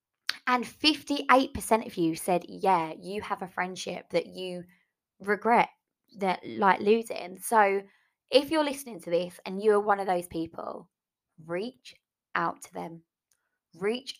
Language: English